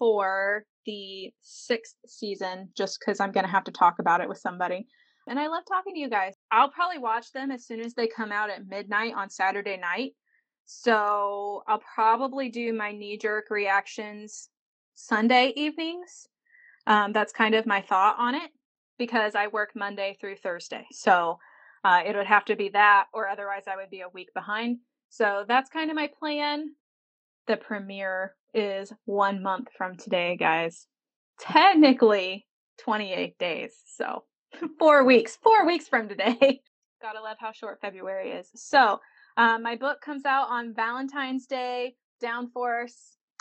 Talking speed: 160 wpm